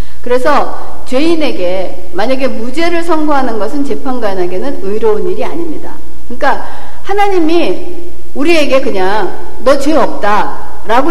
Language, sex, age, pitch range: Korean, female, 60-79, 240-320 Hz